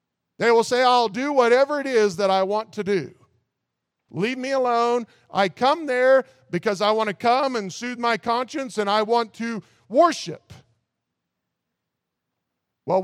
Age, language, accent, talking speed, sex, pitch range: 50-69, English, American, 155 wpm, male, 170-240 Hz